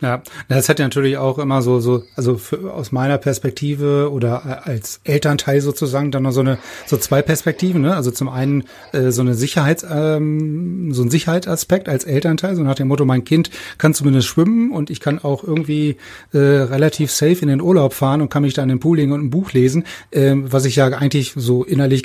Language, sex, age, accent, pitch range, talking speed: German, male, 30-49, German, 130-155 Hz, 210 wpm